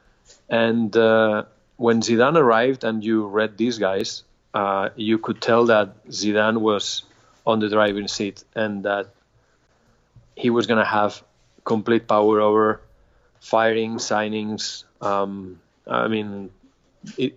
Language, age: English, 30-49